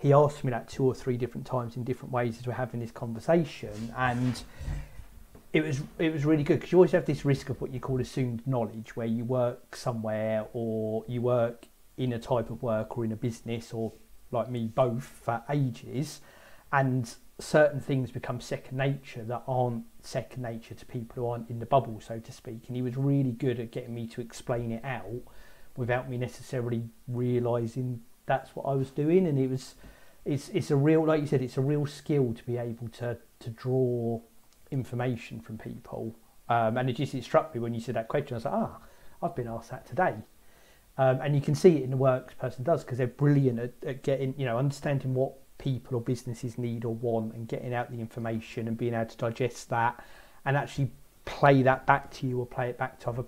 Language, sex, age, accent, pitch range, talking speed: English, male, 40-59, British, 115-135 Hz, 220 wpm